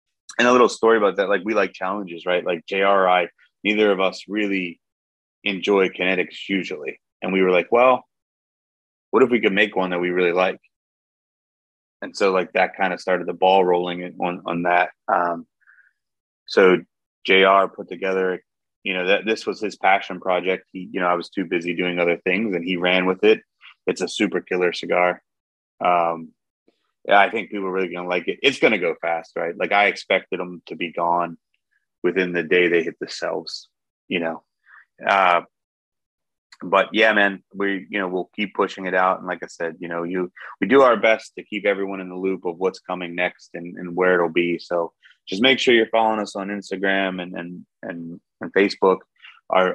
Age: 30-49